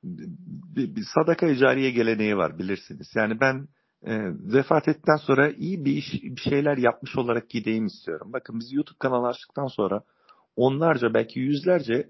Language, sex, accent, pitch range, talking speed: Turkish, male, native, 125-180 Hz, 155 wpm